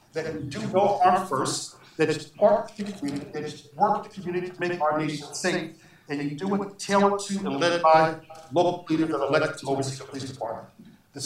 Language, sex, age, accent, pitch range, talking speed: English, male, 50-69, American, 145-185 Hz, 220 wpm